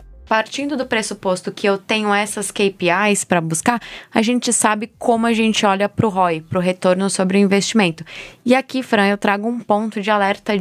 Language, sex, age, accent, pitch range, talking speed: Portuguese, female, 20-39, Brazilian, 200-240 Hz, 200 wpm